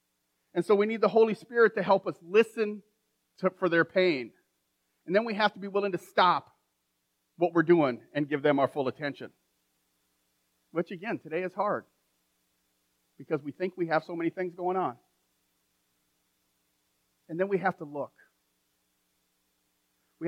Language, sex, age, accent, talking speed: English, male, 40-59, American, 160 wpm